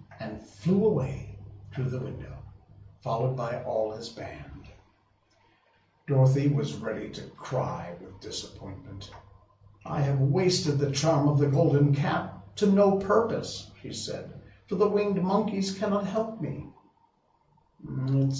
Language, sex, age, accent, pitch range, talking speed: English, male, 60-79, American, 105-160 Hz, 130 wpm